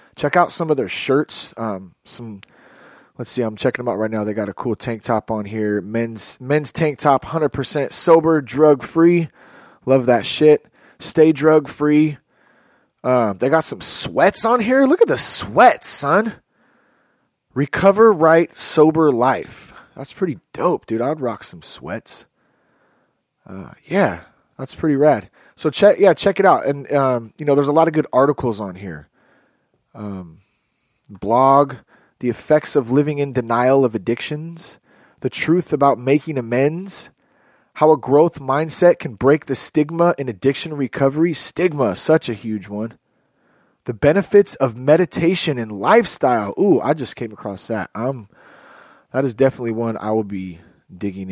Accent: American